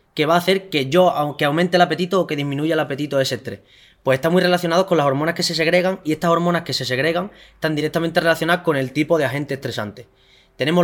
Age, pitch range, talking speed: 20-39, 140-170 Hz, 245 wpm